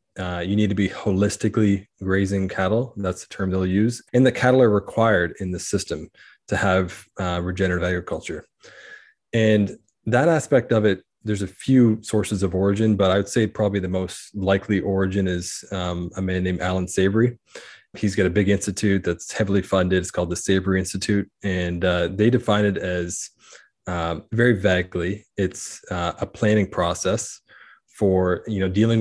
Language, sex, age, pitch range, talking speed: English, male, 20-39, 95-110 Hz, 175 wpm